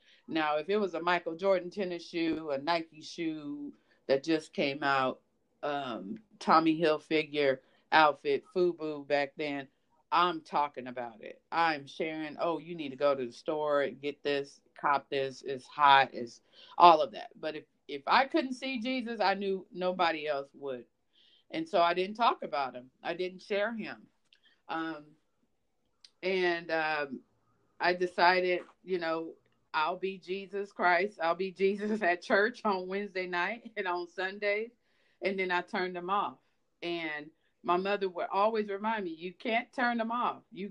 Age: 40-59